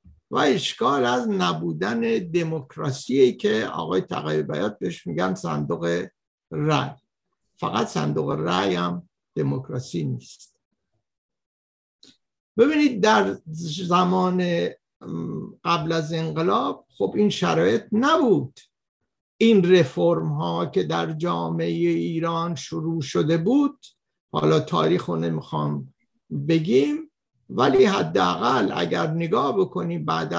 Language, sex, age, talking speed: Persian, male, 60-79, 95 wpm